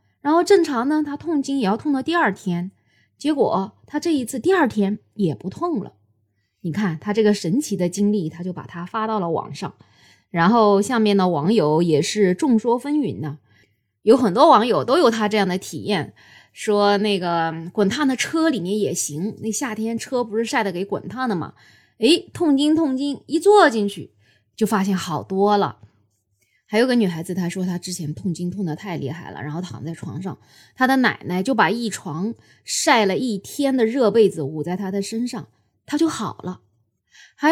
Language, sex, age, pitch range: Chinese, female, 20-39, 175-270 Hz